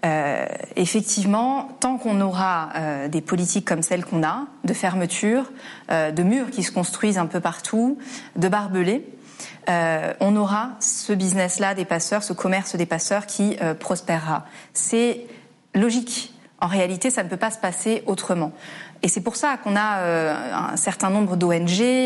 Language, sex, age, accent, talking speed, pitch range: French, female, 30-49, French, 165 wpm, 170-225 Hz